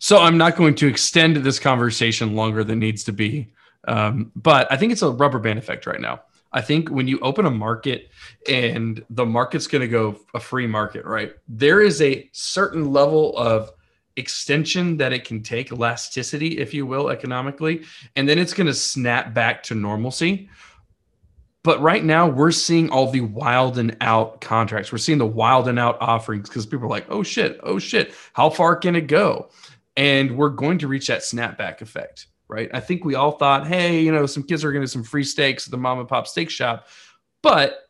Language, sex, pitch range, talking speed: English, male, 115-150 Hz, 205 wpm